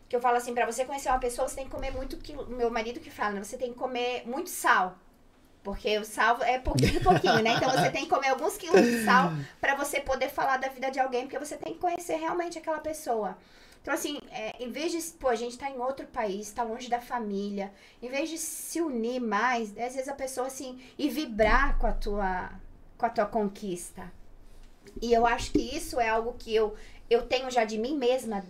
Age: 20-39